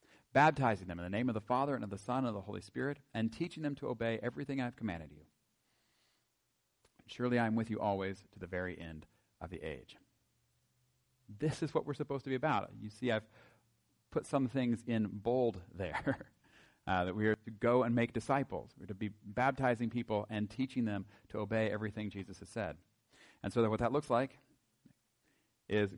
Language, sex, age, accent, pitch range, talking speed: English, male, 40-59, American, 100-130 Hz, 200 wpm